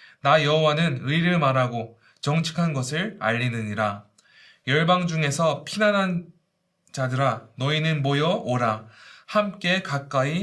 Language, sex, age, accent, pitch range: Korean, male, 20-39, native, 130-170 Hz